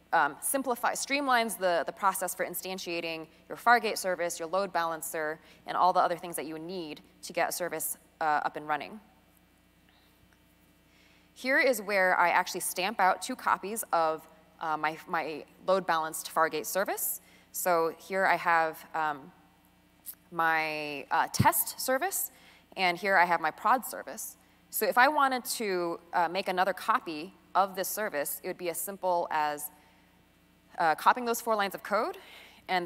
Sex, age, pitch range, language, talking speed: female, 20-39, 150-190 Hz, English, 165 wpm